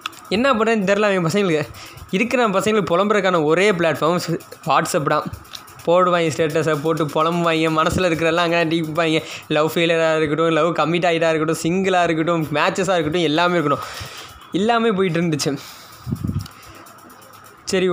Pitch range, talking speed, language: 160-195 Hz, 130 wpm, Tamil